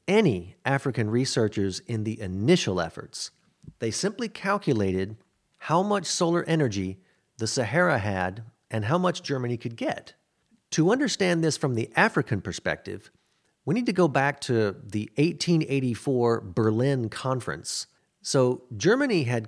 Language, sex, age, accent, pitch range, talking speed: English, male, 40-59, American, 110-155 Hz, 130 wpm